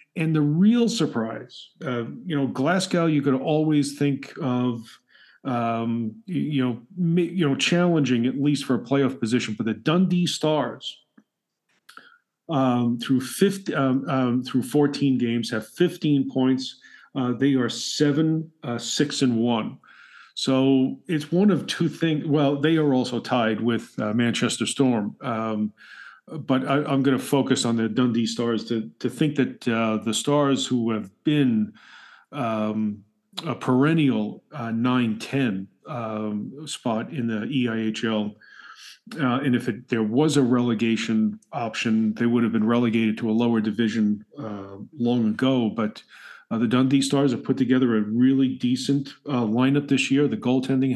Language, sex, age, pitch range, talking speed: English, male, 40-59, 115-145 Hz, 155 wpm